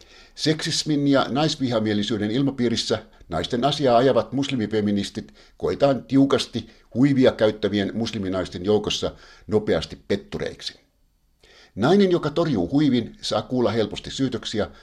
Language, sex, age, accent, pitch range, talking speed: Finnish, male, 60-79, native, 100-130 Hz, 95 wpm